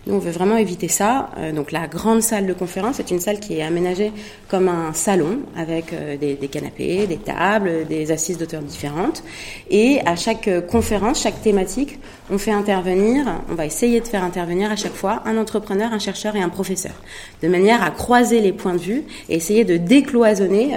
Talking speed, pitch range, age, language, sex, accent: 195 wpm, 170-220 Hz, 30-49, French, female, French